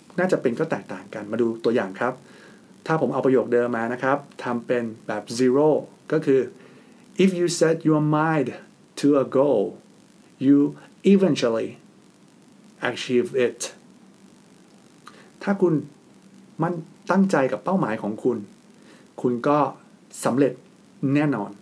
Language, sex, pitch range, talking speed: English, male, 135-180 Hz, 40 wpm